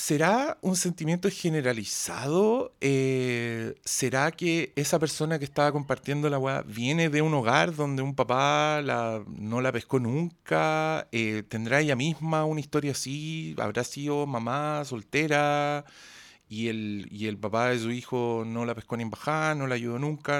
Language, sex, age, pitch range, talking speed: Spanish, male, 40-59, 120-155 Hz, 160 wpm